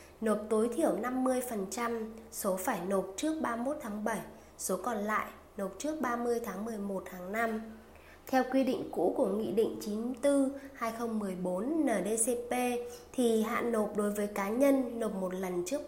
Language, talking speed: Vietnamese, 150 wpm